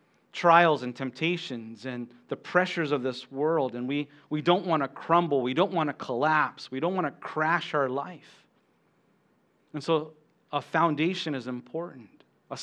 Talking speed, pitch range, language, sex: 165 wpm, 140-180 Hz, English, male